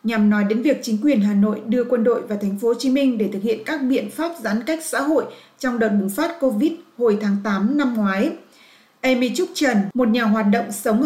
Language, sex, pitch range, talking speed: Vietnamese, female, 210-260 Hz, 245 wpm